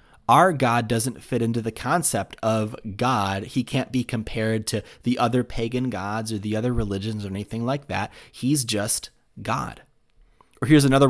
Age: 30-49